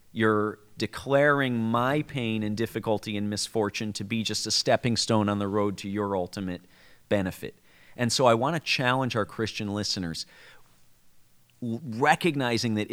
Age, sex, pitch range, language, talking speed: 40-59, male, 105-135 Hz, English, 150 wpm